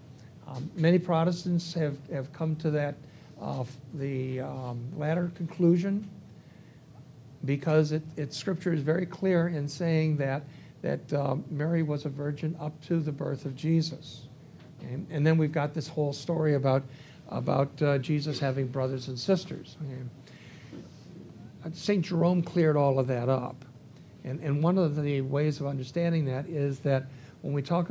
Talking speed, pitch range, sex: 160 wpm, 135-160 Hz, male